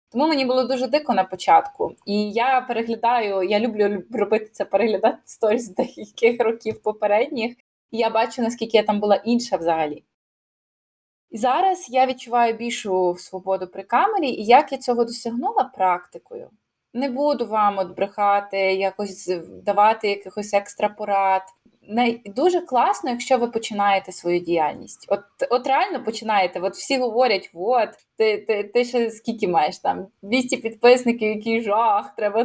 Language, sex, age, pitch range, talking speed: Ukrainian, female, 20-39, 200-245 Hz, 145 wpm